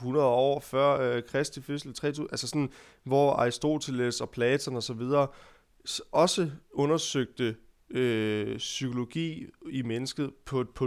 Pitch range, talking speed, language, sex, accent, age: 115-140 Hz, 120 wpm, Danish, male, native, 30-49